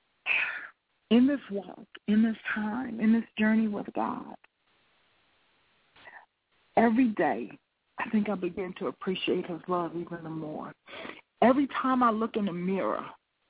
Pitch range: 190-225 Hz